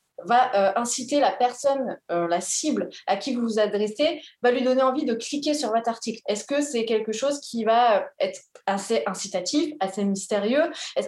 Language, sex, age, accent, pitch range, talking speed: French, female, 20-39, French, 210-265 Hz, 190 wpm